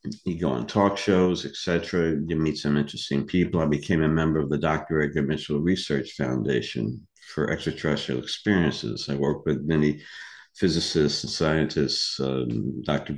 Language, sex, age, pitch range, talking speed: English, male, 60-79, 75-90 Hz, 160 wpm